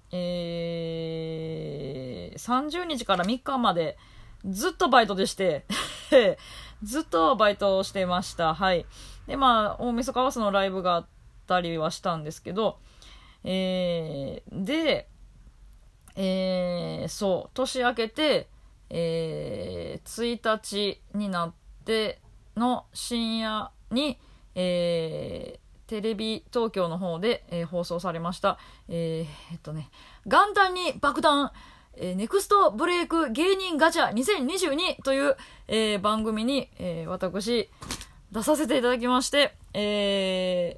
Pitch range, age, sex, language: 175-265 Hz, 20-39, female, Japanese